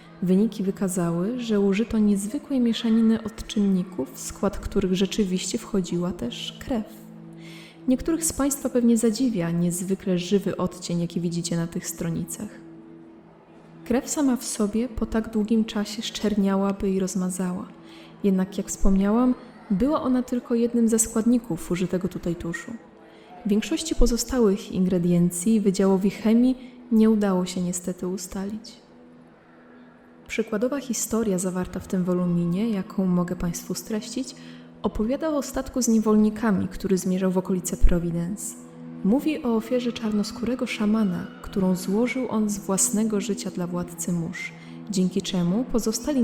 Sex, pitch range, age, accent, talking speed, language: female, 180-225 Hz, 20-39, native, 125 wpm, Polish